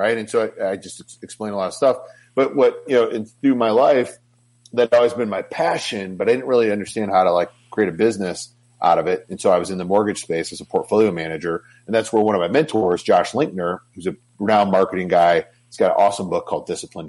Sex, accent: male, American